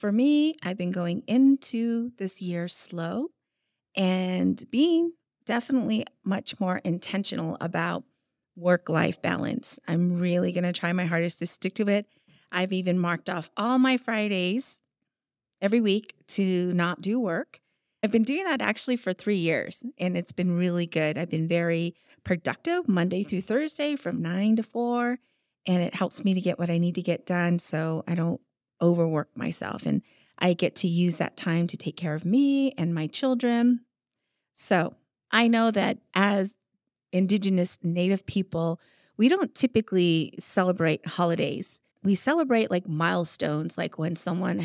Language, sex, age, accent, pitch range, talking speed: English, female, 30-49, American, 175-220 Hz, 160 wpm